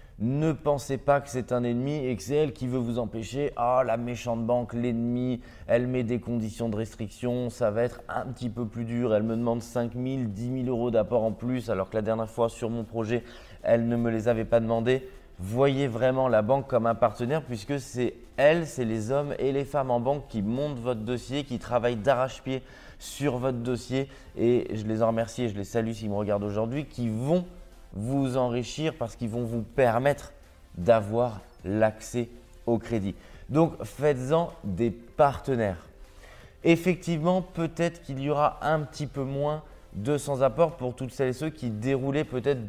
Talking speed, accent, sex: 195 wpm, French, male